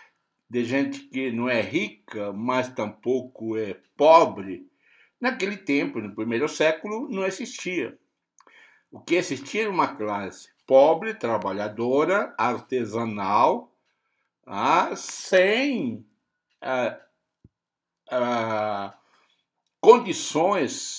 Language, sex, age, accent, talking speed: Portuguese, male, 60-79, Brazilian, 90 wpm